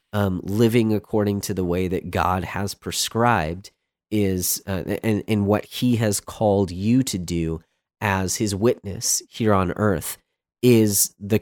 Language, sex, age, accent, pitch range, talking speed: English, male, 30-49, American, 90-115 Hz, 150 wpm